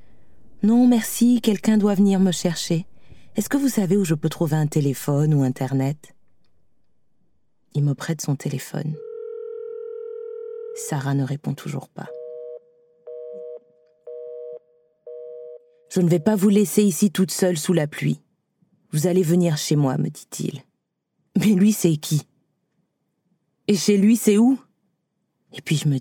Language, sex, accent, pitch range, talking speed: English, female, French, 150-185 Hz, 140 wpm